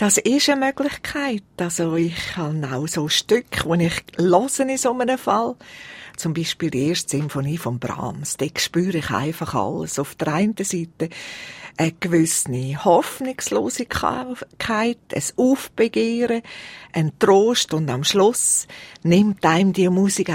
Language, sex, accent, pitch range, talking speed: German, female, Austrian, 165-215 Hz, 140 wpm